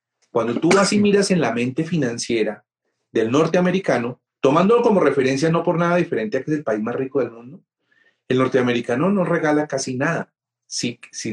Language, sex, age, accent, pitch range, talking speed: Spanish, male, 40-59, Colombian, 125-170 Hz, 185 wpm